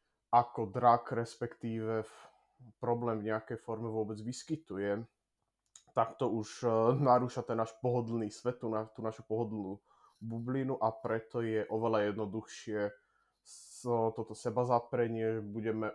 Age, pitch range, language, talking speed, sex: 20-39, 110-120 Hz, Slovak, 115 wpm, male